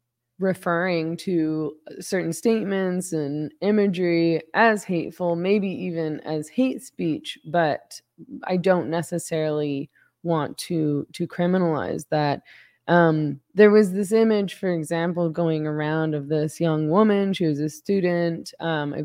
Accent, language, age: American, English, 20-39